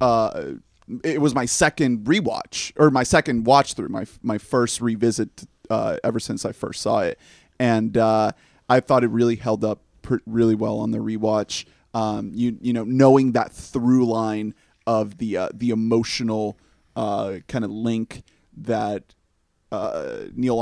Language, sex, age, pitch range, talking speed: English, male, 30-49, 110-125 Hz, 165 wpm